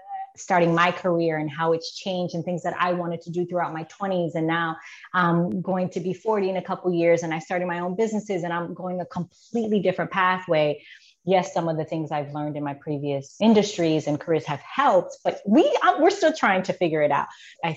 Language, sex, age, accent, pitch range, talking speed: English, female, 30-49, American, 160-200 Hz, 230 wpm